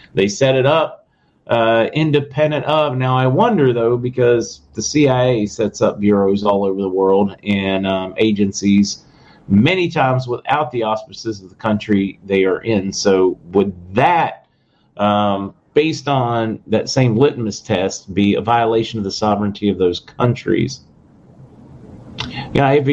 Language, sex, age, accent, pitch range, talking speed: English, male, 40-59, American, 100-135 Hz, 145 wpm